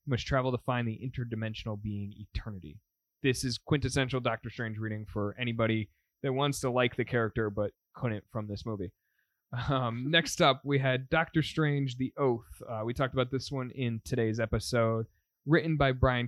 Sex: male